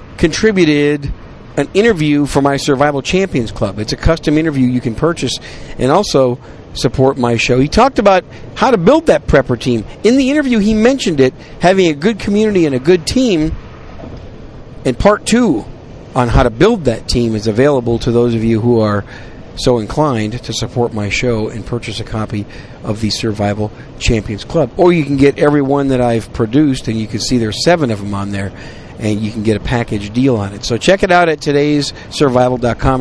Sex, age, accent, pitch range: male, 50-69, American, 115-165 Hz